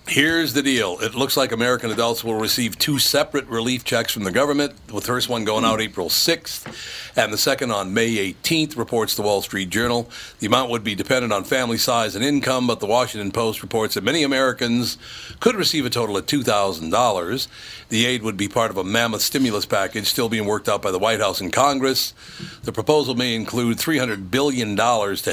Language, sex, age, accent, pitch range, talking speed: English, male, 60-79, American, 100-125 Hz, 205 wpm